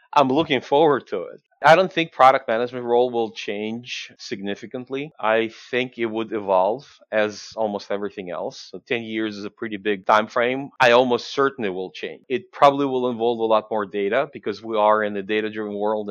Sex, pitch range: male, 105-125 Hz